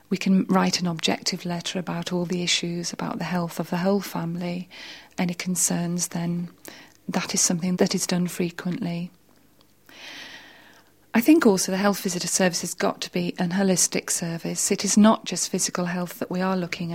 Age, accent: 40-59, British